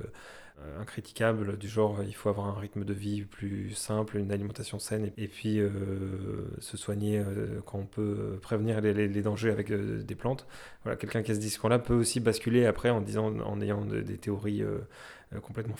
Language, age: French, 20-39